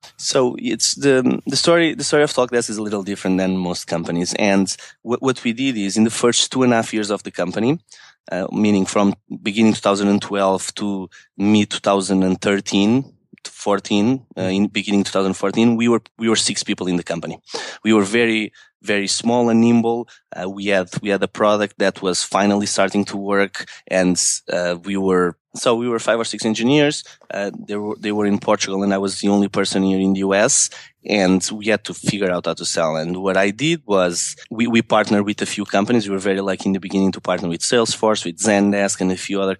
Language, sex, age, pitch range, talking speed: English, male, 20-39, 95-110 Hz, 215 wpm